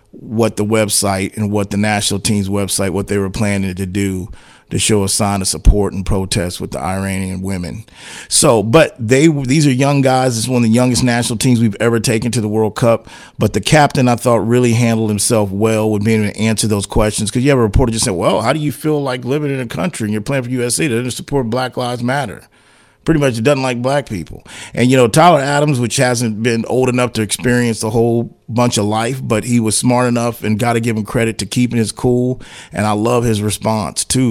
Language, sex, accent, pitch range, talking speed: English, male, American, 105-125 Hz, 240 wpm